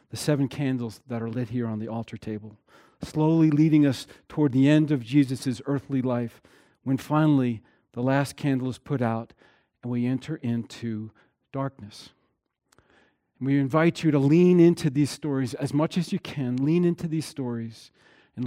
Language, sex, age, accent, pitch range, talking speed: English, male, 40-59, American, 120-150 Hz, 170 wpm